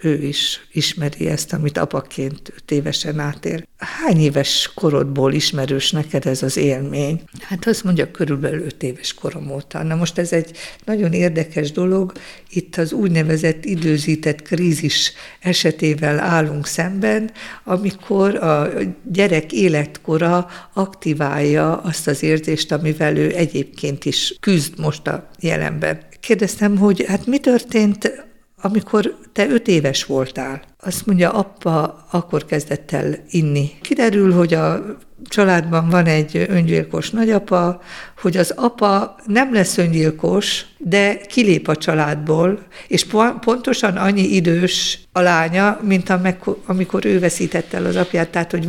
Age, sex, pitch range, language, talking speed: 50-69, female, 150-195 Hz, Hungarian, 130 wpm